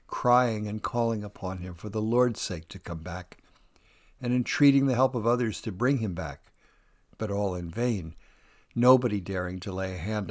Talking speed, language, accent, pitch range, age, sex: 185 wpm, English, American, 100-135 Hz, 60-79, male